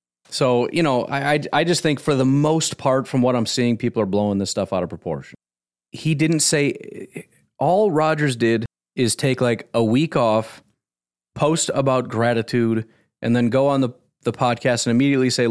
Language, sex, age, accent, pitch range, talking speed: English, male, 30-49, American, 105-140 Hz, 190 wpm